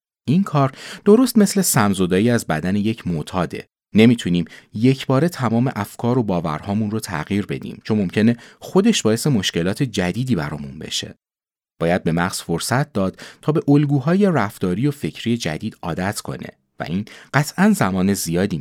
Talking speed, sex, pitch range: 150 wpm, male, 95-145 Hz